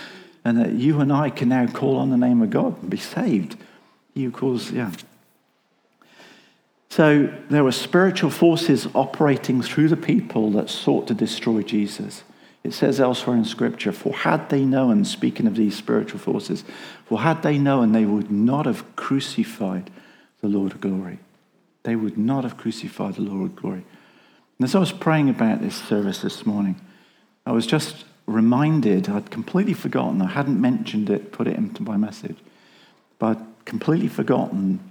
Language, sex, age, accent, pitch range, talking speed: English, male, 50-69, British, 115-185 Hz, 170 wpm